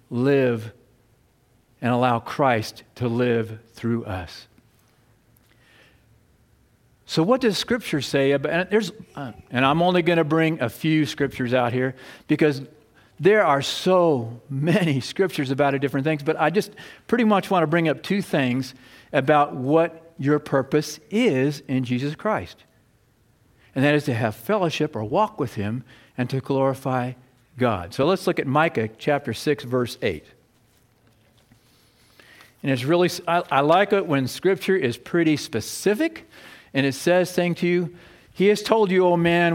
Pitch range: 125-175 Hz